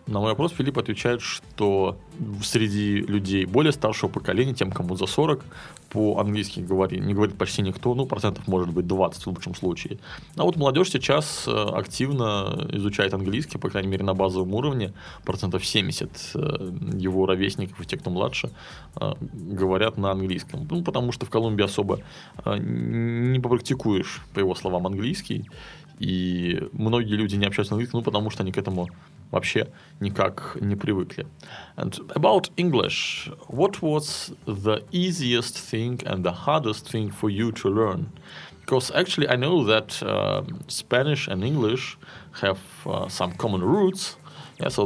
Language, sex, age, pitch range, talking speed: Russian, male, 20-39, 95-125 Hz, 145 wpm